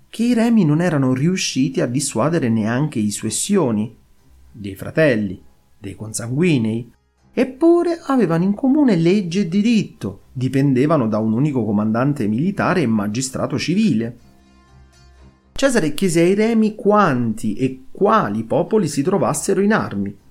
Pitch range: 110-170 Hz